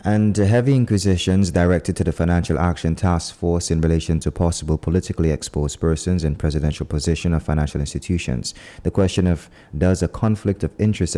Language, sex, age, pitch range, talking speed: English, male, 30-49, 80-95 Hz, 165 wpm